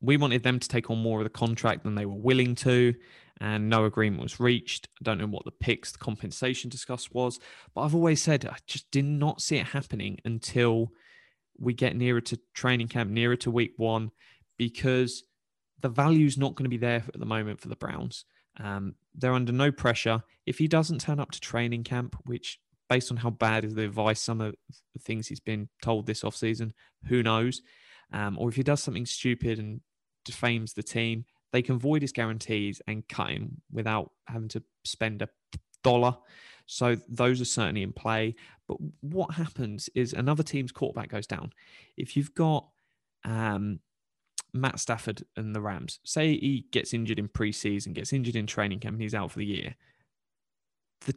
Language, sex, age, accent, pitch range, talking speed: English, male, 20-39, British, 110-130 Hz, 195 wpm